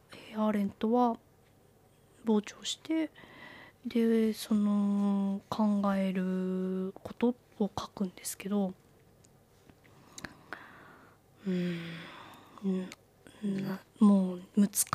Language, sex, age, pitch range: Japanese, female, 20-39, 195-225 Hz